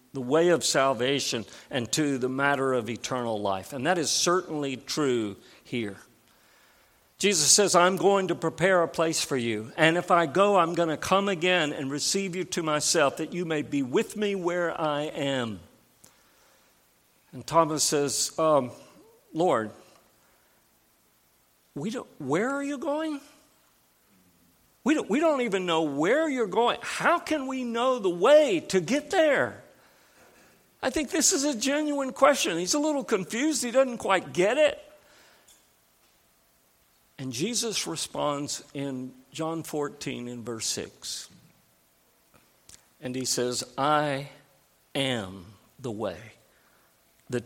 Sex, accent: male, American